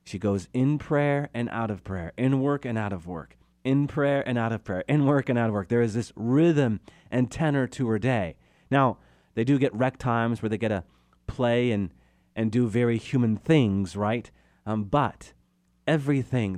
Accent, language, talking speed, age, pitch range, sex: American, English, 205 wpm, 30-49, 95-130 Hz, male